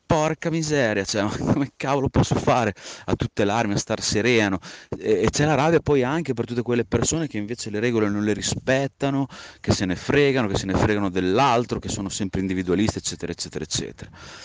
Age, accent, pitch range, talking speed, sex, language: 30-49, Italian, 95-115 Hz, 190 wpm, male, English